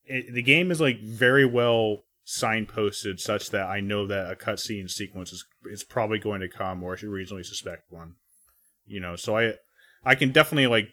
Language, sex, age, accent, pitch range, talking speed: English, male, 30-49, American, 95-115 Hz, 200 wpm